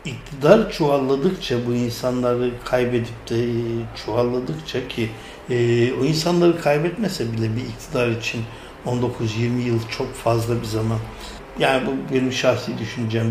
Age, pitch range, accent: 60-79, 115-135 Hz, native